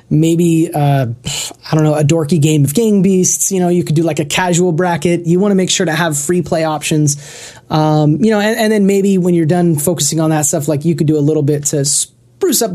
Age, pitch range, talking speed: 20-39, 145-185 Hz, 255 wpm